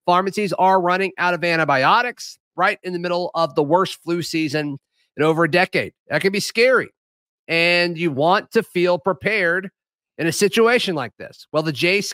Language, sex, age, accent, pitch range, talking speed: English, male, 30-49, American, 150-185 Hz, 185 wpm